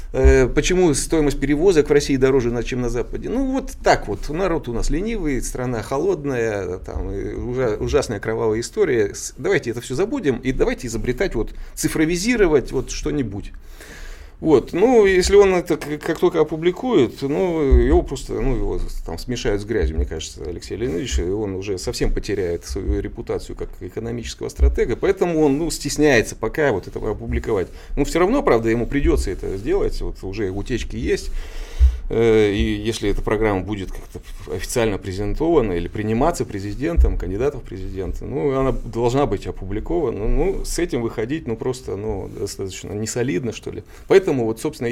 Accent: native